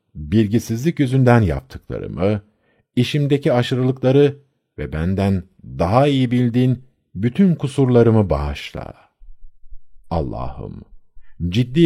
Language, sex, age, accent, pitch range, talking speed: Turkish, male, 50-69, native, 85-135 Hz, 75 wpm